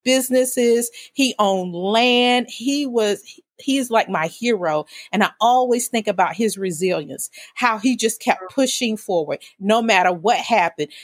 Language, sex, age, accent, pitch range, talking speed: English, female, 40-59, American, 185-245 Hz, 145 wpm